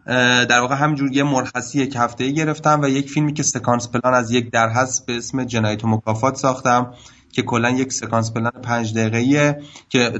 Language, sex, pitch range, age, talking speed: Persian, male, 115-130 Hz, 30-49, 175 wpm